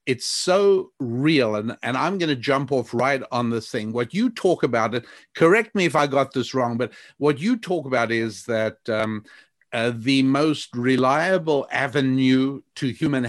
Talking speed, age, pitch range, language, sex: 185 wpm, 50-69, 120-150 Hz, English, male